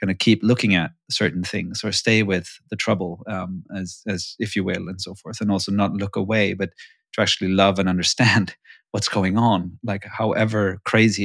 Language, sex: English, male